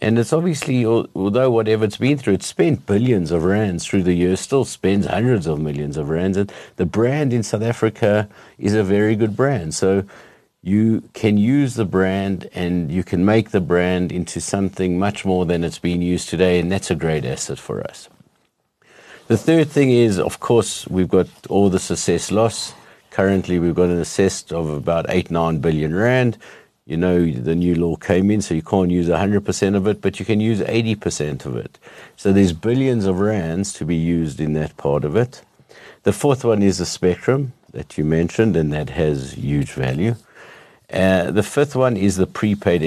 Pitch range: 85-115 Hz